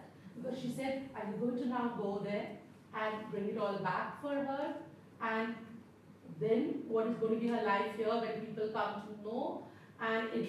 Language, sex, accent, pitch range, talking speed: English, female, Indian, 205-270 Hz, 175 wpm